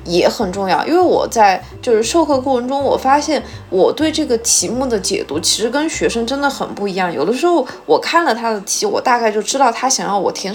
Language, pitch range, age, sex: Chinese, 210-295 Hz, 20-39, female